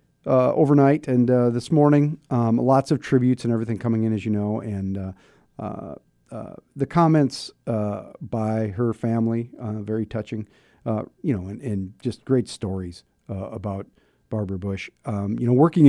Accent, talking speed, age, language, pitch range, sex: American, 175 wpm, 40-59, English, 105-130 Hz, male